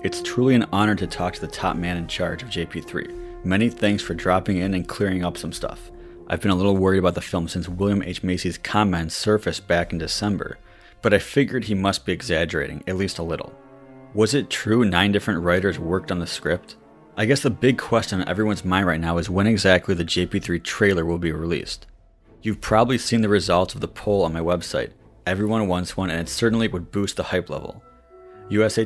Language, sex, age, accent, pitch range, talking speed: English, male, 30-49, American, 85-105 Hz, 215 wpm